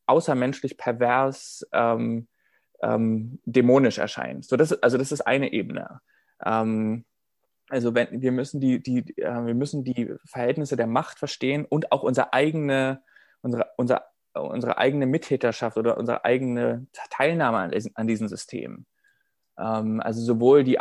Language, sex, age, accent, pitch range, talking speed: English, male, 20-39, German, 115-135 Hz, 110 wpm